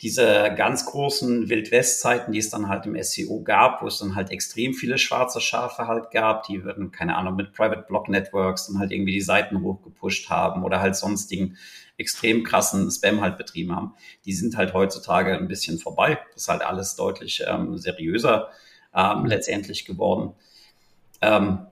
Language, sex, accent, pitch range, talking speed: German, male, German, 95-120 Hz, 170 wpm